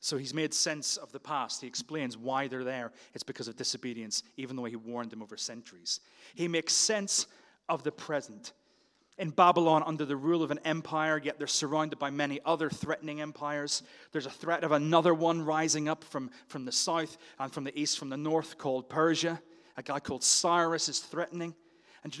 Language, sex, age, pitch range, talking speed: English, male, 30-49, 140-170 Hz, 205 wpm